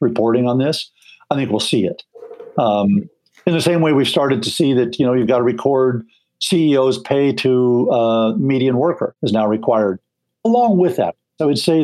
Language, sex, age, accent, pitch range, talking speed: English, male, 50-69, American, 120-155 Hz, 200 wpm